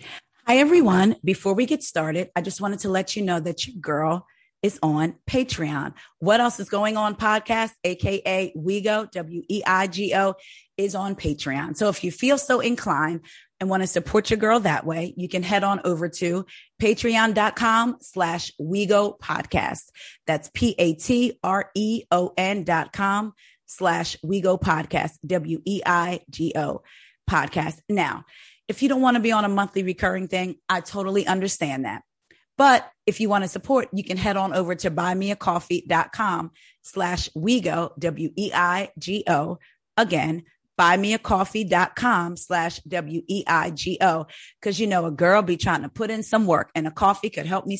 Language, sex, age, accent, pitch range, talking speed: English, female, 30-49, American, 175-215 Hz, 165 wpm